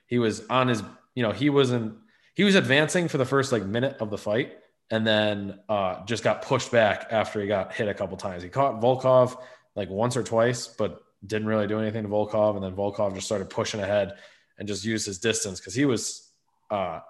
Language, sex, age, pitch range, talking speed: English, male, 20-39, 110-130 Hz, 220 wpm